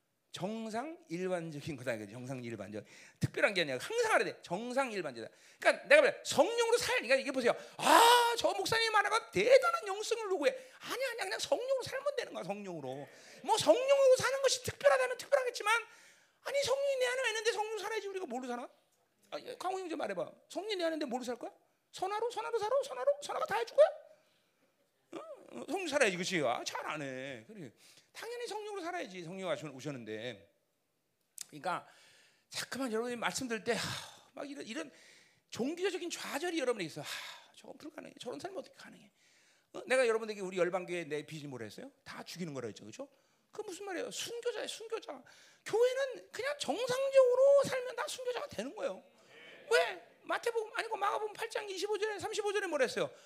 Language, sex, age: Korean, male, 40-59